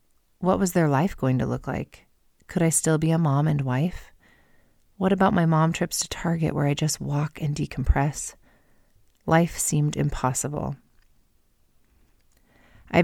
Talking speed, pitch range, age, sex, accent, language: 150 wpm, 140-165 Hz, 30-49, female, American, English